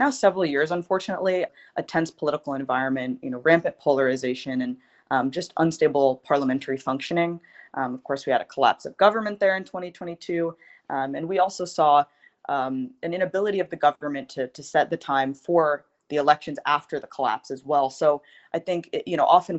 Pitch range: 130-165 Hz